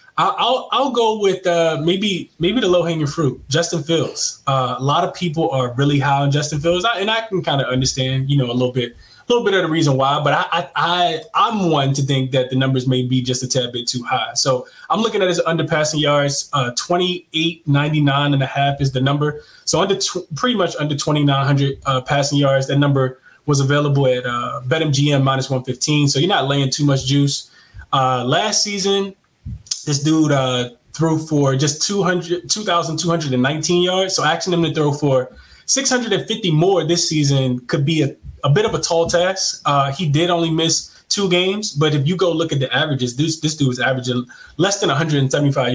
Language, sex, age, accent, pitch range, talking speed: English, male, 20-39, American, 135-175 Hz, 205 wpm